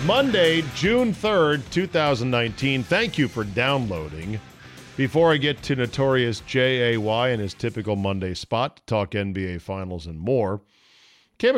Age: 50-69